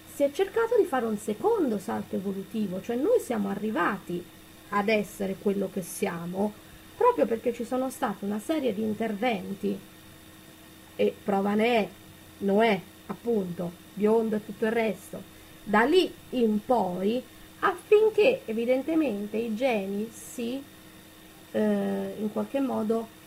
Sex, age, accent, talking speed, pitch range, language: female, 20-39, native, 130 wpm, 200-245 Hz, Italian